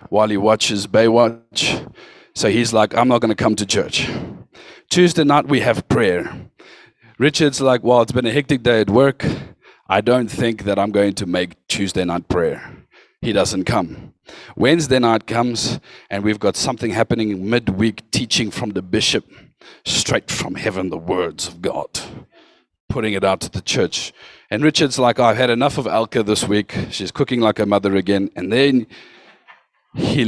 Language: English